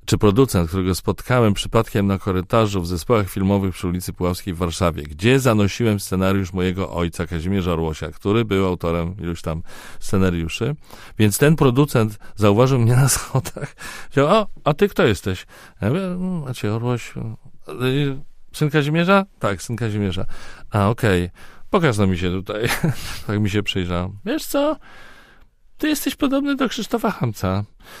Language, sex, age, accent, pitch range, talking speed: Polish, male, 40-59, native, 95-145 Hz, 145 wpm